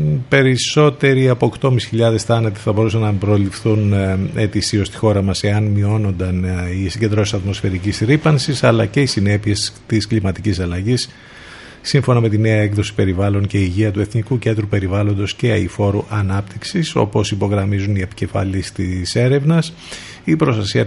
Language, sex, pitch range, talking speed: Greek, male, 95-110 Hz, 140 wpm